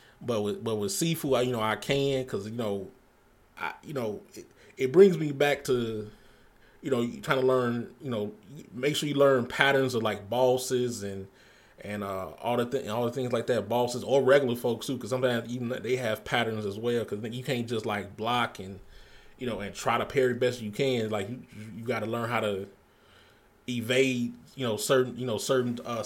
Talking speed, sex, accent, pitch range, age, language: 215 wpm, male, American, 105-130 Hz, 20-39, English